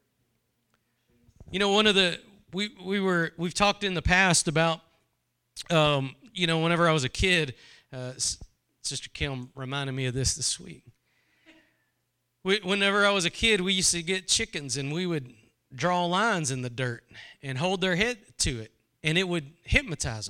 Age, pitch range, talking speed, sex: 40-59, 125-195 Hz, 175 wpm, male